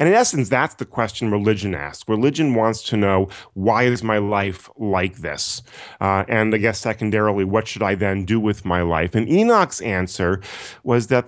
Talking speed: 190 wpm